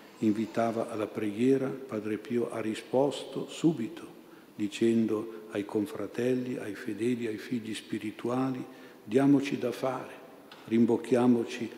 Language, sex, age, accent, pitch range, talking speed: Italian, male, 60-79, native, 105-125 Hz, 100 wpm